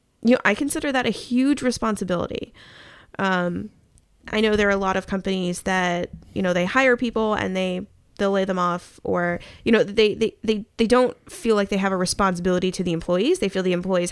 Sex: female